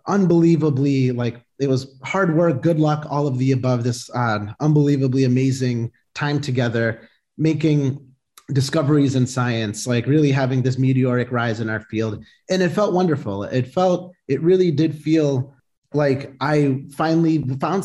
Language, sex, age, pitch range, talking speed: English, male, 30-49, 125-160 Hz, 150 wpm